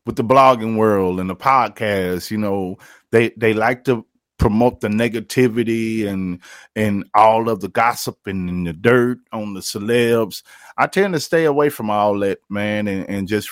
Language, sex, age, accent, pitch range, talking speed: English, male, 30-49, American, 100-120 Hz, 180 wpm